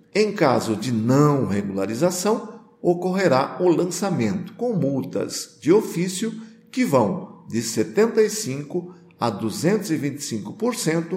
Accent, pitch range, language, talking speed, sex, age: Brazilian, 125-185 Hz, Portuguese, 85 wpm, male, 50-69